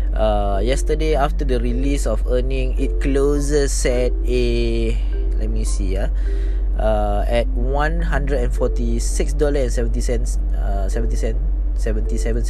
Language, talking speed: English, 135 wpm